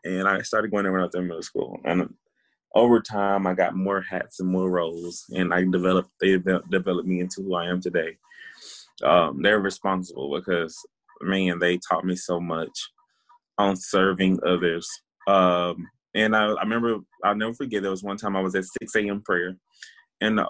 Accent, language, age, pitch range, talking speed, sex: American, English, 20-39, 95-110 Hz, 190 wpm, male